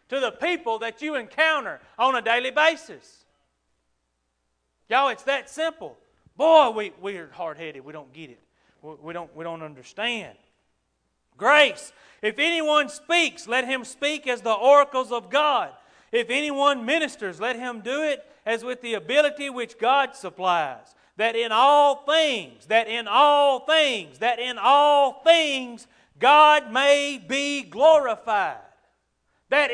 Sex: male